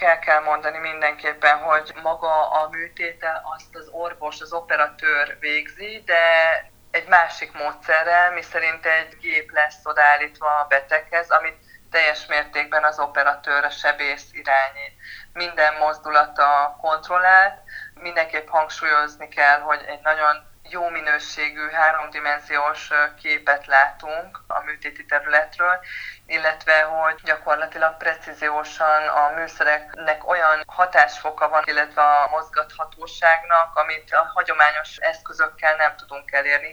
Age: 20-39